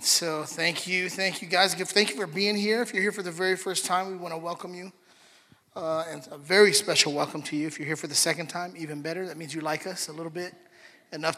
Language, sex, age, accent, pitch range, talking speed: English, male, 30-49, American, 160-200 Hz, 265 wpm